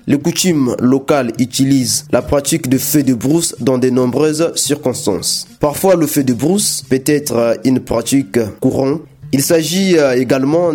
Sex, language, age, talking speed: male, French, 30-49, 150 wpm